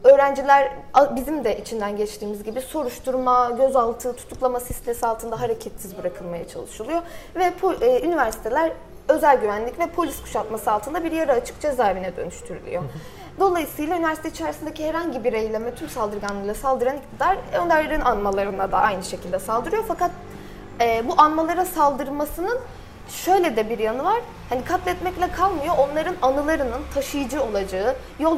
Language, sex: Turkish, female